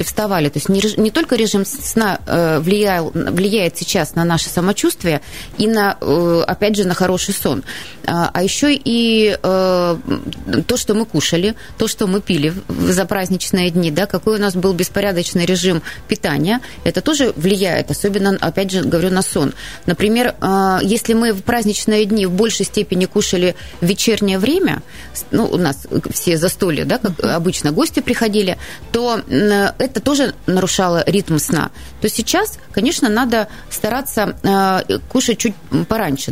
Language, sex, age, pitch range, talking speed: Russian, female, 20-39, 175-220 Hz, 150 wpm